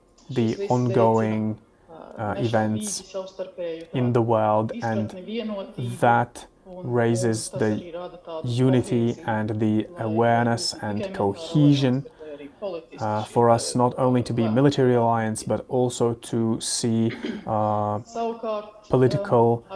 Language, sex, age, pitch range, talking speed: English, male, 30-49, 110-145 Hz, 95 wpm